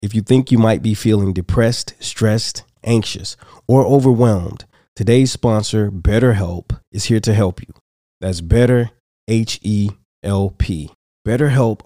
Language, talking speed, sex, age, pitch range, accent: English, 115 wpm, male, 30-49, 100-120 Hz, American